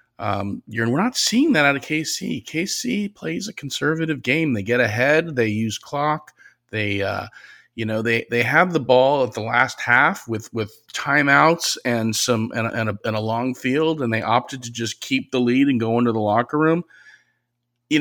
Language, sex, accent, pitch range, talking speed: English, male, American, 110-145 Hz, 200 wpm